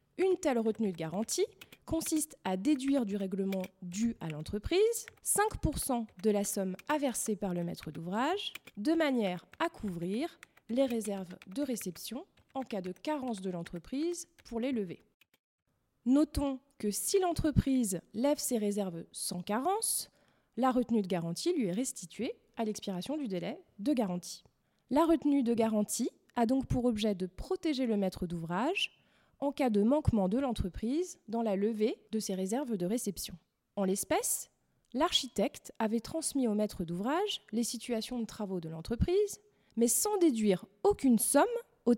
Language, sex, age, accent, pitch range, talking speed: French, female, 20-39, French, 195-275 Hz, 155 wpm